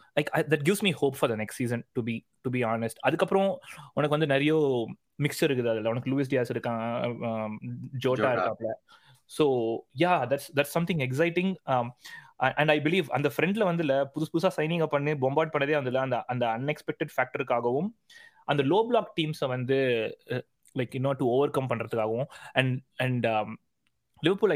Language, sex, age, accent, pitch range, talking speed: Tamil, male, 20-39, native, 125-150 Hz, 215 wpm